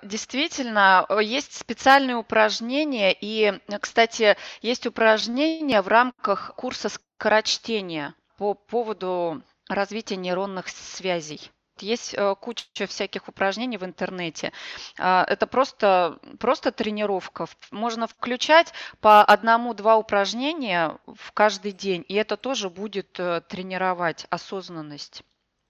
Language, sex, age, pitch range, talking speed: Russian, female, 20-39, 185-225 Hz, 95 wpm